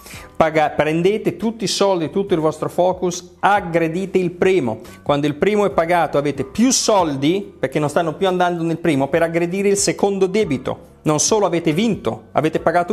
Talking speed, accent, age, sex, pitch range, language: 175 wpm, native, 30-49, male, 130-180 Hz, Italian